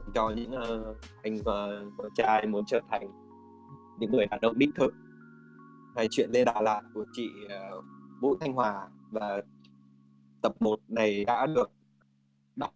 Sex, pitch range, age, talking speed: male, 105-125 Hz, 20-39, 160 wpm